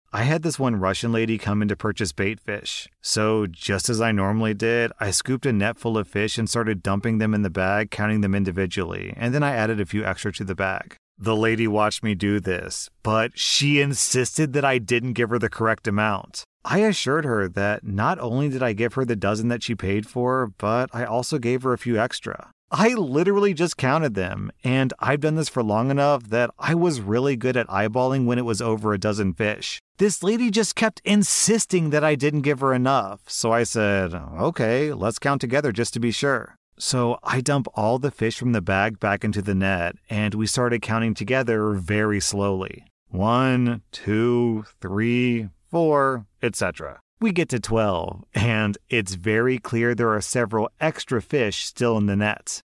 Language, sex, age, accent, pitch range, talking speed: English, male, 30-49, American, 105-130 Hz, 200 wpm